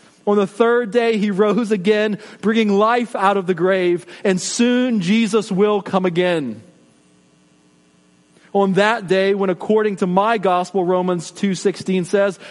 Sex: male